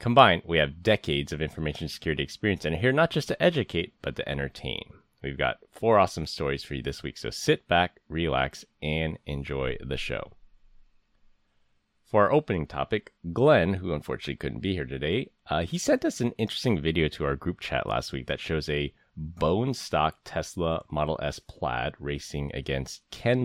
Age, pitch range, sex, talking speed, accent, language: 30-49, 70-100 Hz, male, 180 wpm, American, English